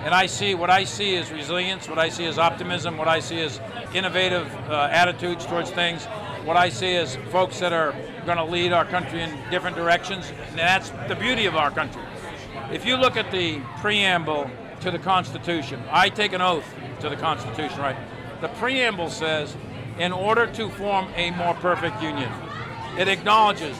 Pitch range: 155-180 Hz